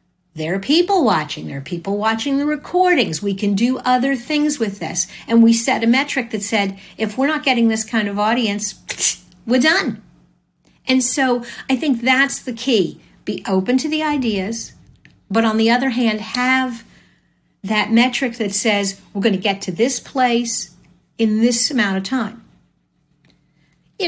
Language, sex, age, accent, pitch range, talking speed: English, female, 50-69, American, 205-260 Hz, 170 wpm